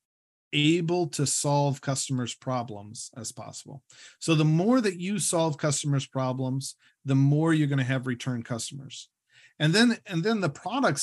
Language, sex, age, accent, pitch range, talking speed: English, male, 40-59, American, 130-160 Hz, 160 wpm